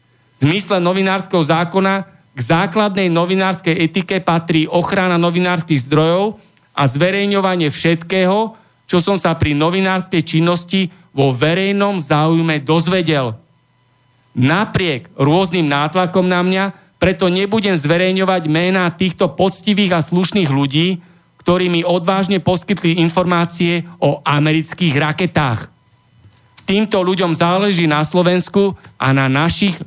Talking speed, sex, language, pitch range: 110 wpm, male, Slovak, 150-185 Hz